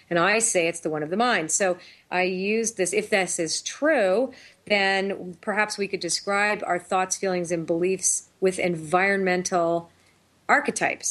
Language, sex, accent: English, female, American